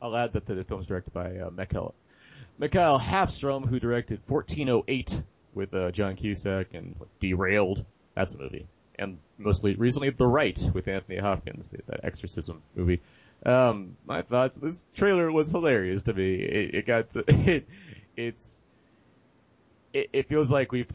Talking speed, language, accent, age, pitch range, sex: 160 wpm, English, American, 30-49, 95-130 Hz, male